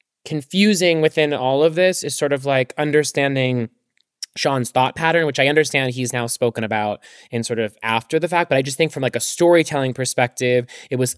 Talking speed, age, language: 200 wpm, 20-39, English